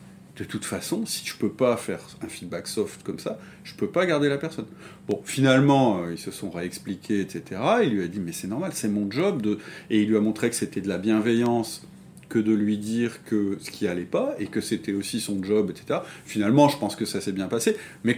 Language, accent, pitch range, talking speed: French, French, 100-130 Hz, 240 wpm